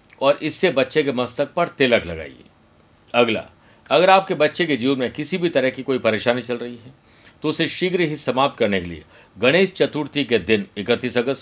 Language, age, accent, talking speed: Hindi, 50-69, native, 200 wpm